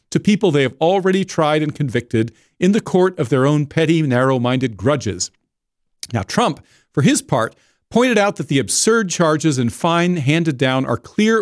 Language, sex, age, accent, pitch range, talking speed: English, male, 50-69, American, 140-185 Hz, 180 wpm